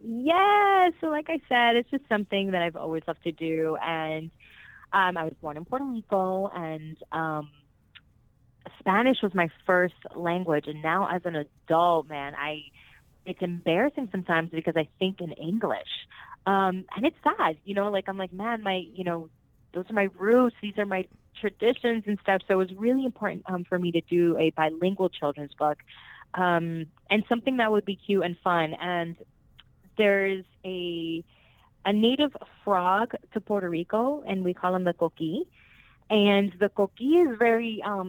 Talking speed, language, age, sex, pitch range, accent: 175 wpm, English, 20-39, female, 165-215 Hz, American